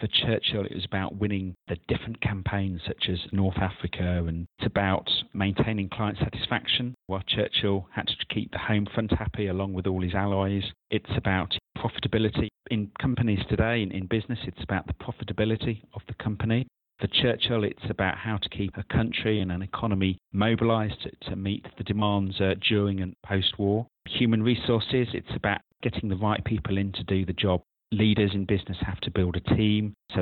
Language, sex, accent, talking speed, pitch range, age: English, male, British, 185 wpm, 95-110 Hz, 40-59